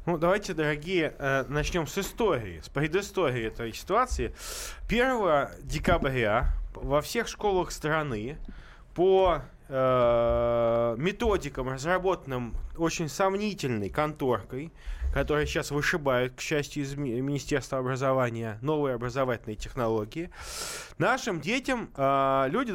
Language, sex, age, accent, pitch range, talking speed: Russian, male, 20-39, native, 135-185 Hz, 95 wpm